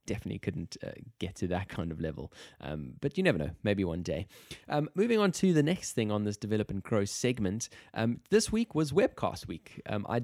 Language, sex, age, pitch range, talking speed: English, male, 20-39, 95-130 Hz, 225 wpm